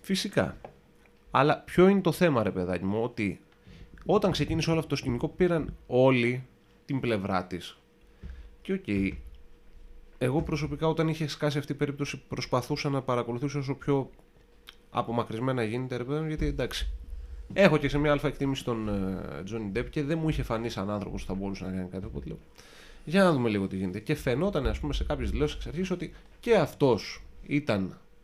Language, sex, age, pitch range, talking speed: Greek, male, 30-49, 100-150 Hz, 180 wpm